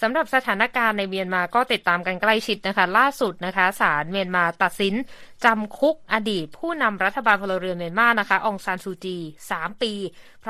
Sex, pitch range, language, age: female, 175-225 Hz, Thai, 20-39